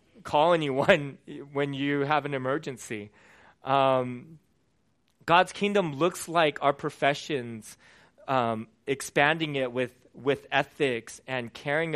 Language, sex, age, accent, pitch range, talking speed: English, male, 20-39, American, 130-155 Hz, 115 wpm